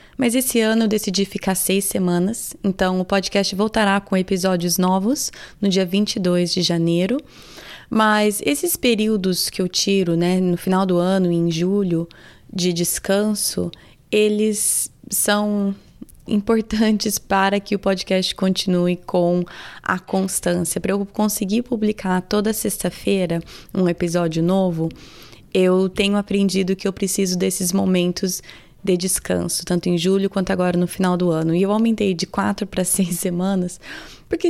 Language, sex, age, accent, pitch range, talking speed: Portuguese, female, 20-39, Brazilian, 180-205 Hz, 145 wpm